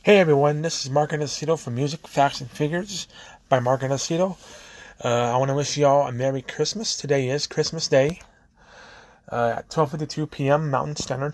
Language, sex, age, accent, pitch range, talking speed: English, male, 20-39, American, 120-150 Hz, 175 wpm